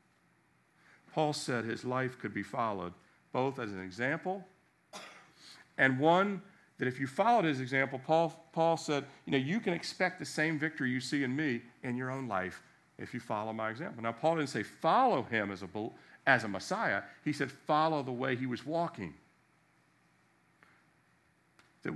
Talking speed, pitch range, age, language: 170 wpm, 120-160 Hz, 50-69, English